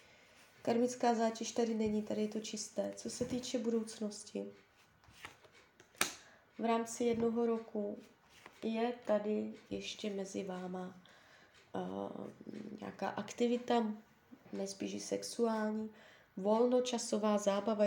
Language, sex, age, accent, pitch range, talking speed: Czech, female, 20-39, native, 200-230 Hz, 95 wpm